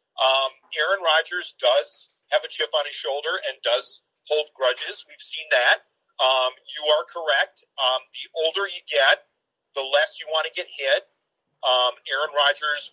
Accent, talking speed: American, 165 wpm